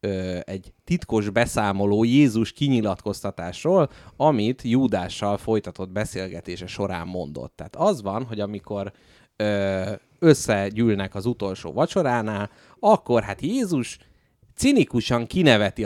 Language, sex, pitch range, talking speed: Hungarian, male, 100-135 Hz, 95 wpm